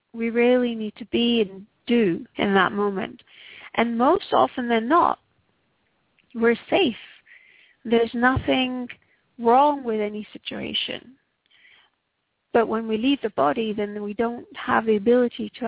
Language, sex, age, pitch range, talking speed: English, female, 40-59, 220-265 Hz, 140 wpm